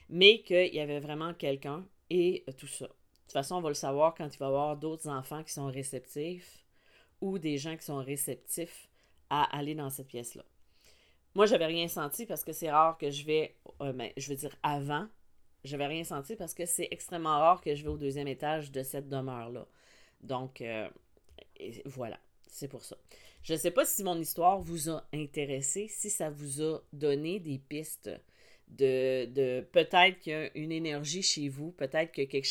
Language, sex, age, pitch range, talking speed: French, female, 40-59, 140-180 Hz, 205 wpm